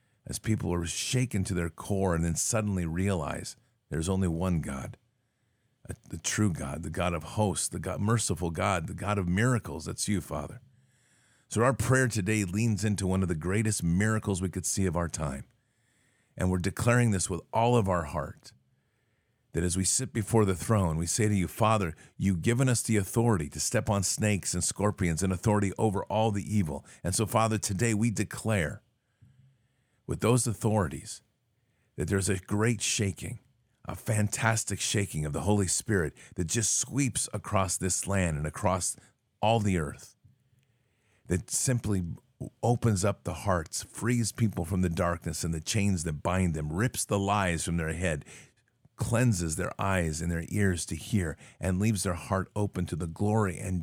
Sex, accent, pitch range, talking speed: male, American, 90-115 Hz, 180 wpm